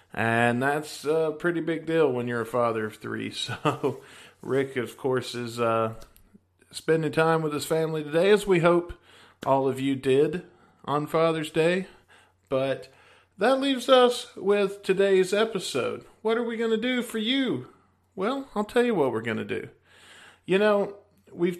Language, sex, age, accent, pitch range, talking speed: English, male, 40-59, American, 125-180 Hz, 170 wpm